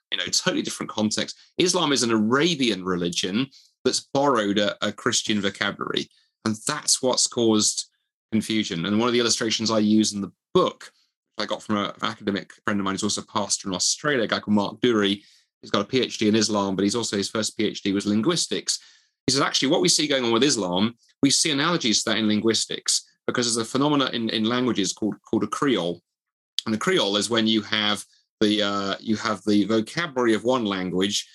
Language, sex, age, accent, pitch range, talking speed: English, male, 30-49, British, 100-125 Hz, 210 wpm